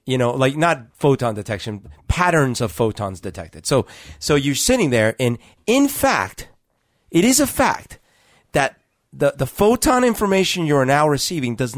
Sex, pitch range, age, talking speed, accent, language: male, 115-165 Hz, 40-59, 165 wpm, American, English